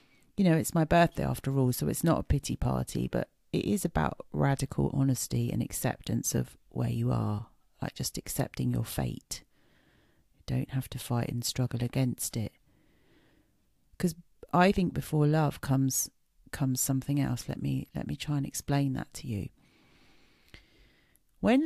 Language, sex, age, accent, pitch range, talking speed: English, female, 40-59, British, 120-150 Hz, 165 wpm